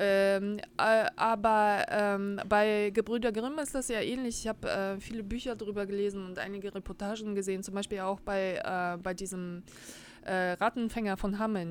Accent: German